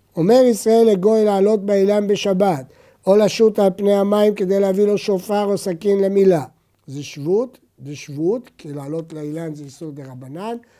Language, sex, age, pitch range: Hebrew, male, 60-79, 155-220 Hz